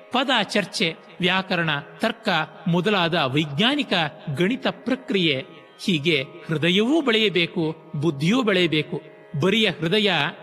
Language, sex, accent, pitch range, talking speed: Kannada, male, native, 160-210 Hz, 85 wpm